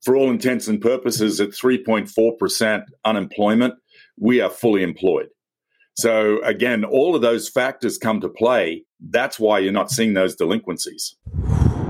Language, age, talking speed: English, 50-69, 140 wpm